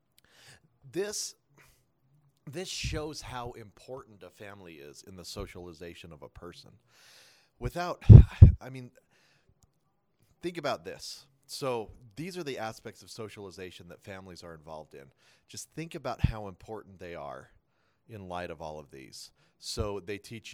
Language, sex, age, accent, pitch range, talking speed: English, male, 40-59, American, 95-130 Hz, 140 wpm